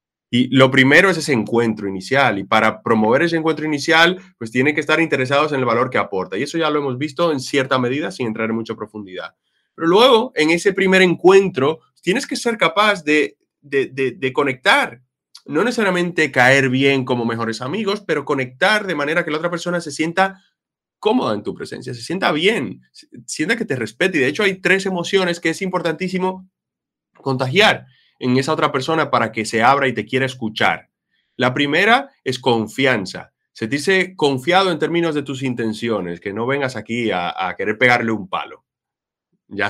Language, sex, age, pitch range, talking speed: Spanish, male, 20-39, 115-175 Hz, 190 wpm